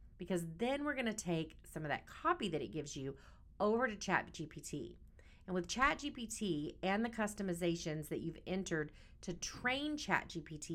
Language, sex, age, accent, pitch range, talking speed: English, female, 30-49, American, 155-205 Hz, 155 wpm